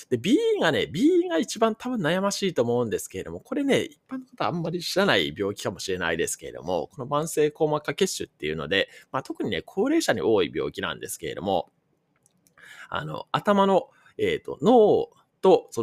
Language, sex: Japanese, male